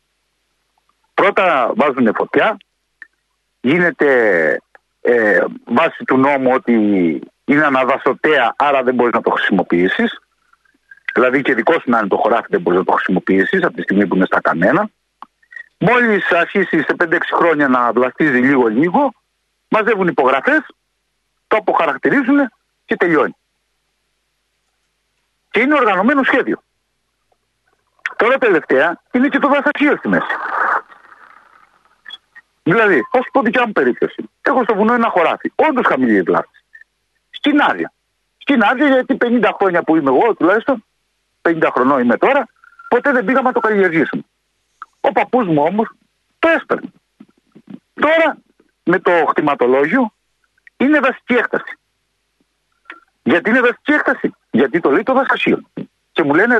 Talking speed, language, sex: 125 wpm, Greek, male